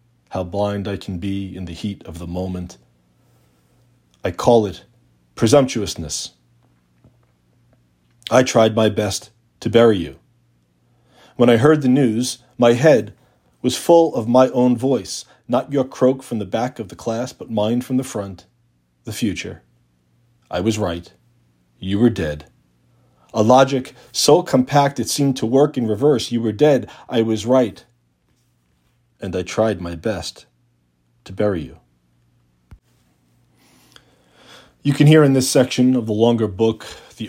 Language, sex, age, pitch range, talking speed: English, male, 40-59, 75-120 Hz, 150 wpm